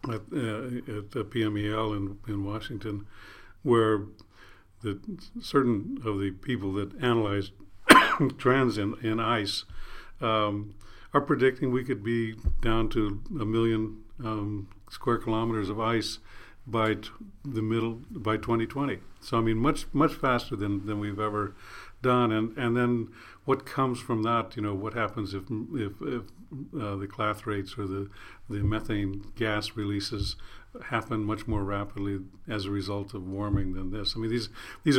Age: 60-79